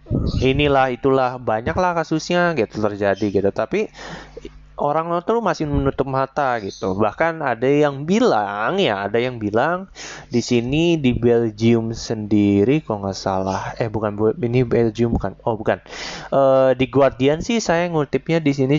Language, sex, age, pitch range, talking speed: Indonesian, male, 20-39, 120-170 Hz, 145 wpm